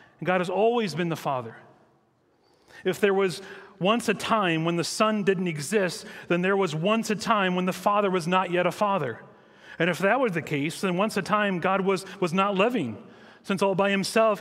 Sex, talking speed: male, 210 wpm